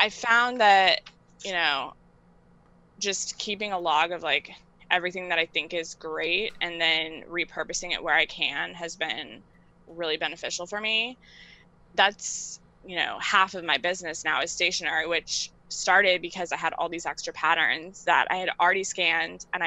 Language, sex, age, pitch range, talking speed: English, female, 20-39, 165-190 Hz, 170 wpm